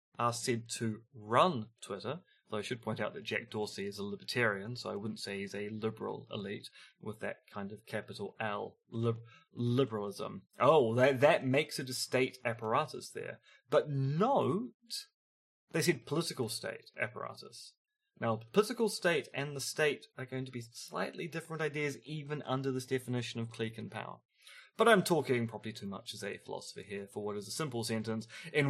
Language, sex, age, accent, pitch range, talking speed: English, male, 30-49, British, 115-175 Hz, 180 wpm